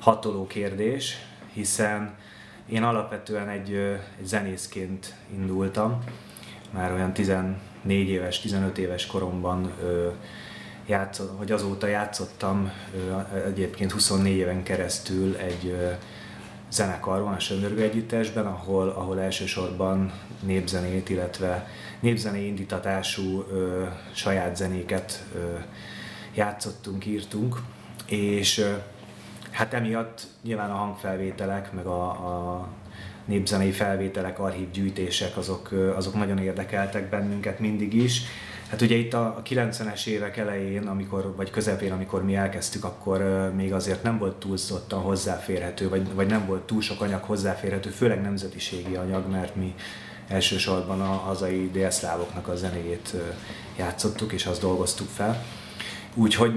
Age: 30-49